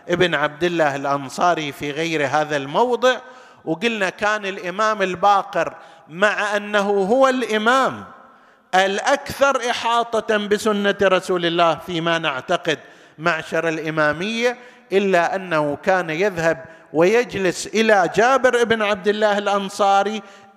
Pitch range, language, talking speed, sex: 160-220 Hz, Arabic, 105 wpm, male